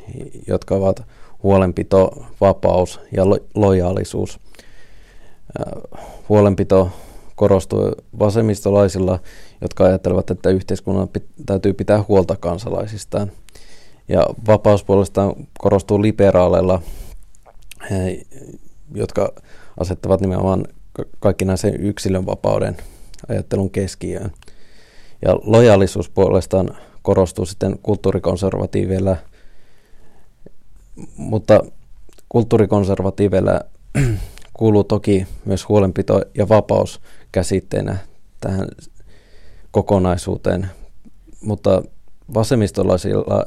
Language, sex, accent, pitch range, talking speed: Finnish, male, native, 95-105 Hz, 70 wpm